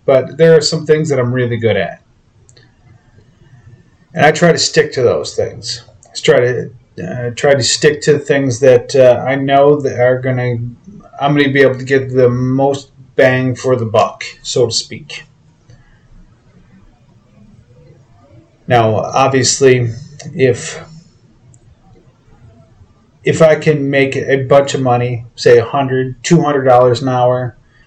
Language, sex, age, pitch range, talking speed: English, male, 30-49, 115-140 Hz, 140 wpm